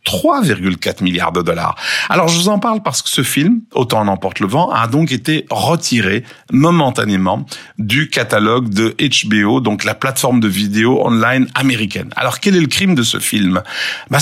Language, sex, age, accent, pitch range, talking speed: French, male, 50-69, French, 105-155 Hz, 180 wpm